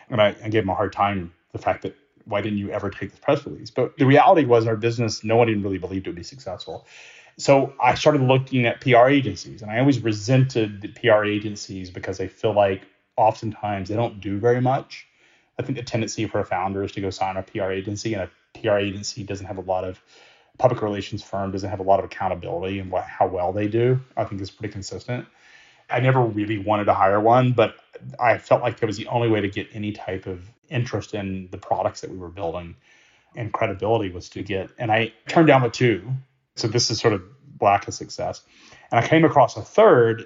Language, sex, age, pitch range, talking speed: English, male, 30-49, 100-120 Hz, 230 wpm